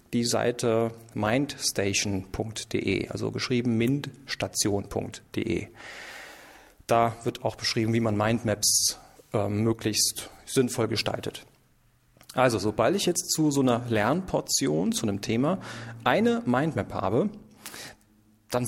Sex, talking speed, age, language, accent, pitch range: male, 105 wpm, 40-59, German, German, 110-140 Hz